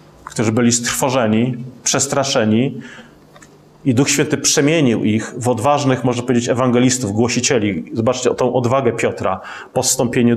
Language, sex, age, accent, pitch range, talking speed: Polish, male, 30-49, native, 115-130 Hz, 120 wpm